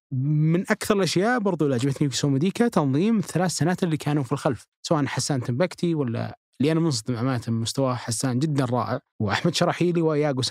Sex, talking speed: male, 155 wpm